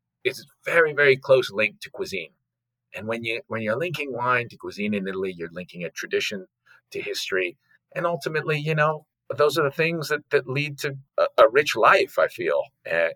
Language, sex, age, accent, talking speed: English, male, 40-59, American, 195 wpm